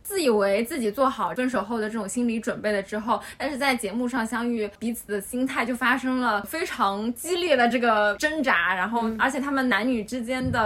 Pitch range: 215-260 Hz